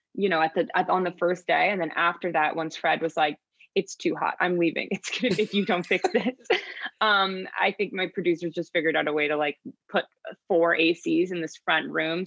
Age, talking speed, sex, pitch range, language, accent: 20-39, 235 wpm, female, 165-200 Hz, English, American